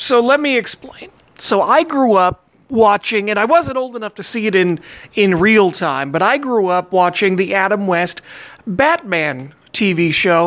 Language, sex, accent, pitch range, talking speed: English, male, American, 190-240 Hz, 185 wpm